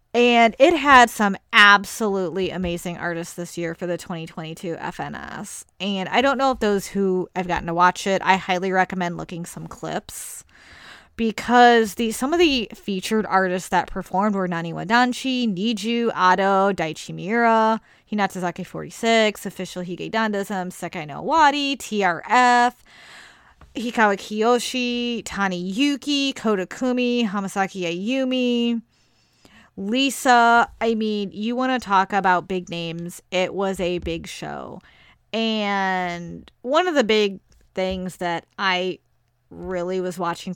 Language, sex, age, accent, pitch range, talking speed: English, female, 20-39, American, 180-230 Hz, 130 wpm